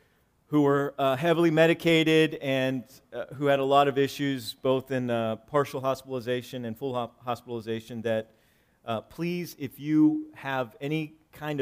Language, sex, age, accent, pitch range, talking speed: English, male, 40-59, American, 125-155 Hz, 155 wpm